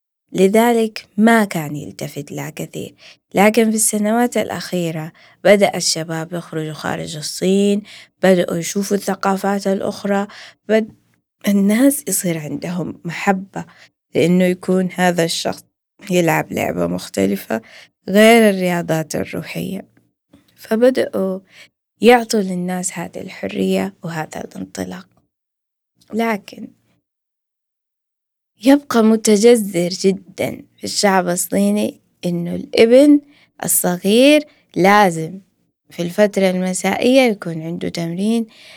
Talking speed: 90 wpm